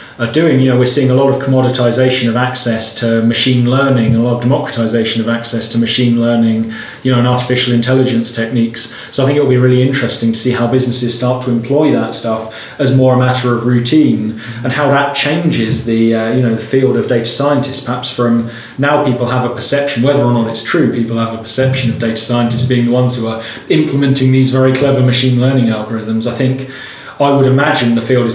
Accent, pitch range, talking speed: British, 115-130 Hz, 220 wpm